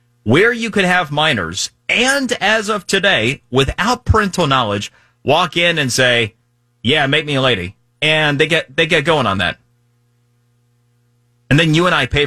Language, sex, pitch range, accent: English, male, 120-175 Hz, American